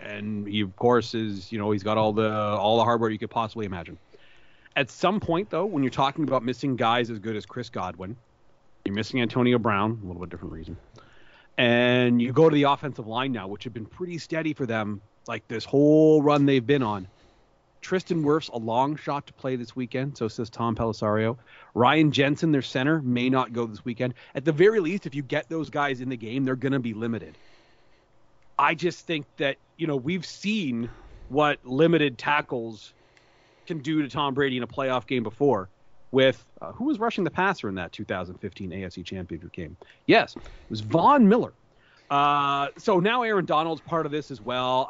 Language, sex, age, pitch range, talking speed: English, male, 30-49, 110-145 Hz, 200 wpm